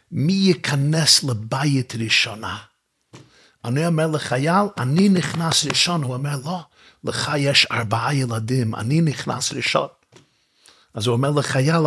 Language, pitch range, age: Hebrew, 135-190 Hz, 50-69